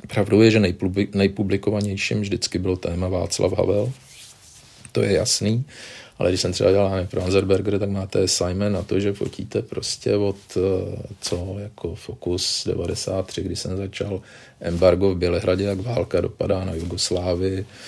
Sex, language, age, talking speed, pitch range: male, Czech, 40-59, 145 wpm, 90-100 Hz